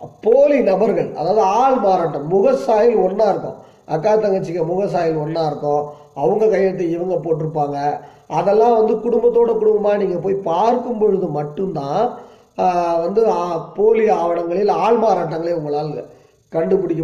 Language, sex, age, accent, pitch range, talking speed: Tamil, male, 20-39, native, 155-210 Hz, 115 wpm